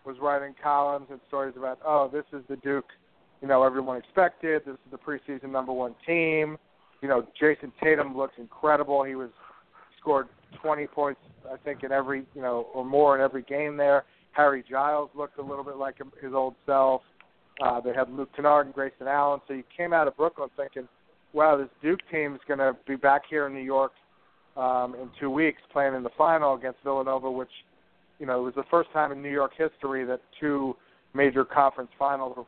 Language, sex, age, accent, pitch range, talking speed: English, male, 40-59, American, 130-145 Hz, 205 wpm